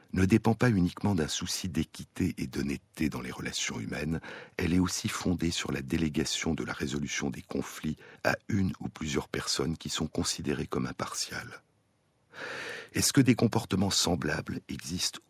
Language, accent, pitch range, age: French, French, 80-105 Hz, 60-79